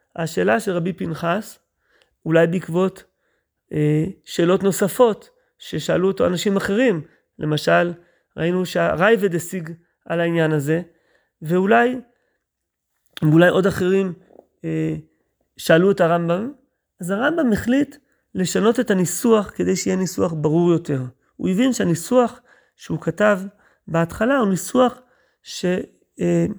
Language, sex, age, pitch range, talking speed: Hebrew, male, 30-49, 170-225 Hz, 110 wpm